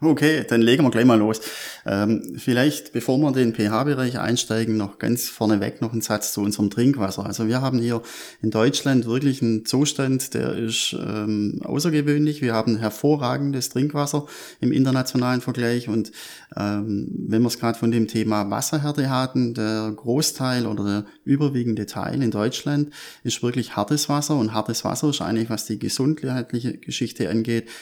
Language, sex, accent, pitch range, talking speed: German, male, German, 110-135 Hz, 165 wpm